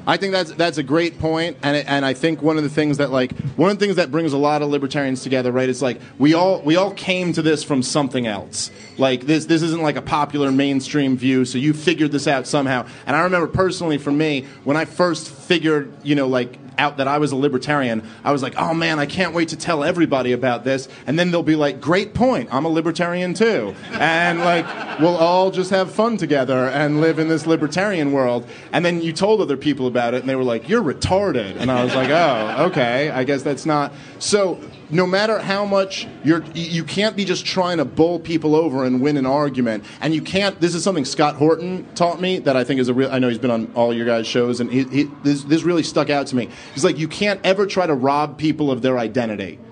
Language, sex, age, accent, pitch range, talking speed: English, male, 30-49, American, 135-170 Hz, 245 wpm